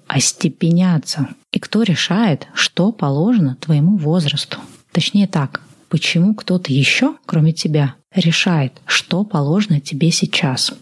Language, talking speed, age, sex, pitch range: Russian, 110 wpm, 30-49, female, 155-200 Hz